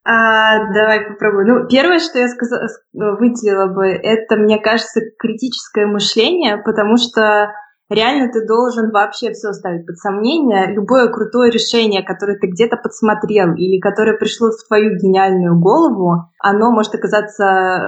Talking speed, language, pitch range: 135 wpm, Russian, 205-235 Hz